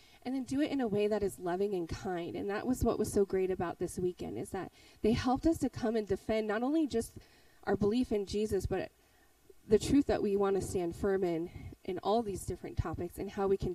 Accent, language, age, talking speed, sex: American, English, 20-39, 245 wpm, female